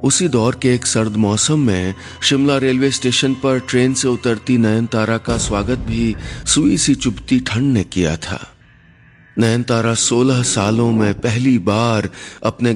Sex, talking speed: male, 150 wpm